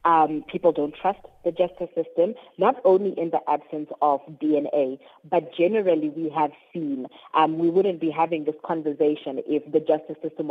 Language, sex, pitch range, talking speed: English, female, 150-180 Hz, 170 wpm